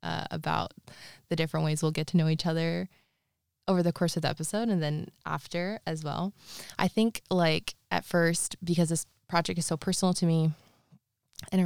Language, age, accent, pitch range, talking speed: English, 20-39, American, 155-175 Hz, 190 wpm